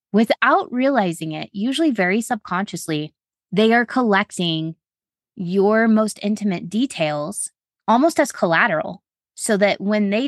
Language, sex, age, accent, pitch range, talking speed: English, female, 20-39, American, 165-205 Hz, 115 wpm